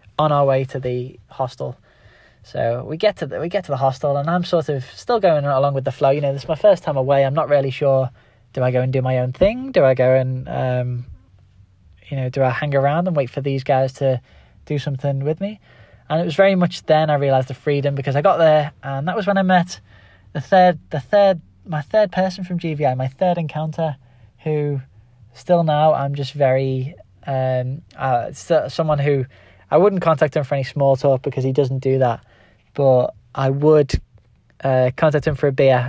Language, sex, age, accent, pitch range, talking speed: English, male, 10-29, British, 125-155 Hz, 215 wpm